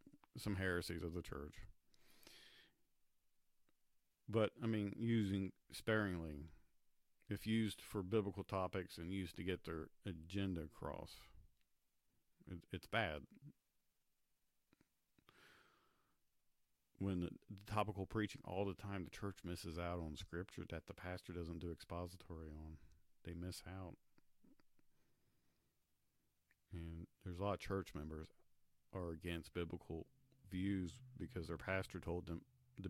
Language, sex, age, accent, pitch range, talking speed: English, male, 50-69, American, 85-105 Hz, 120 wpm